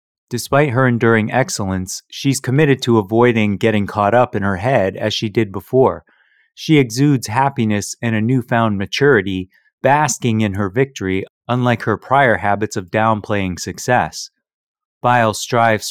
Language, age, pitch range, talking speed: English, 30-49, 100-125 Hz, 145 wpm